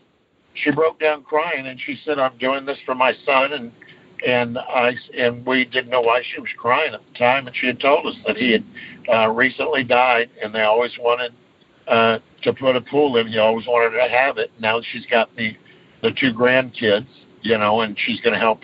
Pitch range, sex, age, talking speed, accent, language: 120-140 Hz, male, 60-79, 220 wpm, American, English